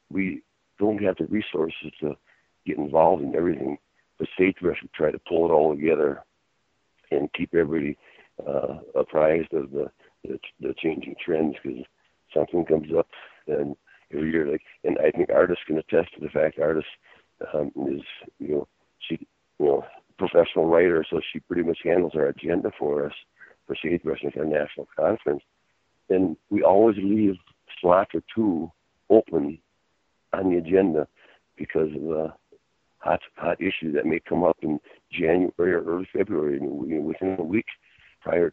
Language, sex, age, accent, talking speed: English, male, 60-79, American, 165 wpm